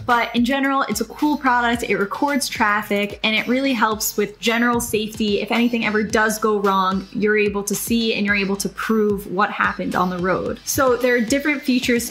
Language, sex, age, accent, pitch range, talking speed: English, female, 10-29, American, 210-260 Hz, 210 wpm